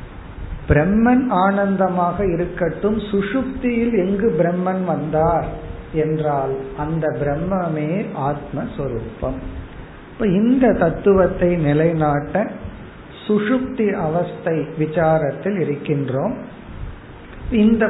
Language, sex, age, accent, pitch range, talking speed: Tamil, male, 50-69, native, 155-205 Hz, 65 wpm